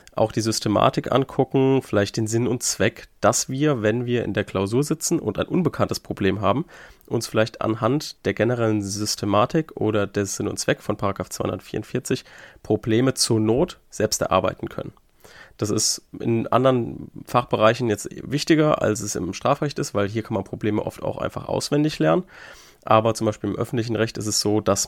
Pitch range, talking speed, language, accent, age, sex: 105-125 Hz, 180 wpm, German, German, 30-49, male